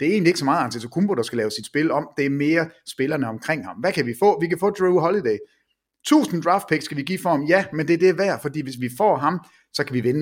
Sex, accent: male, Danish